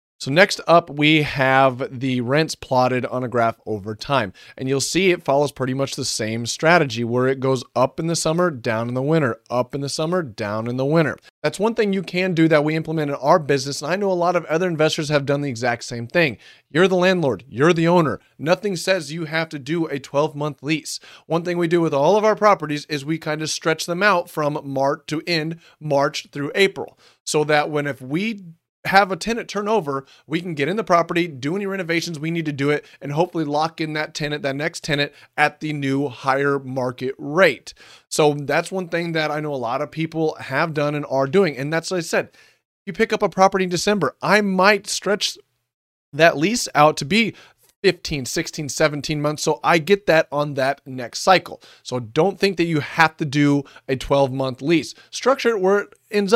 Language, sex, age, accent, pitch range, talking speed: English, male, 30-49, American, 140-175 Hz, 225 wpm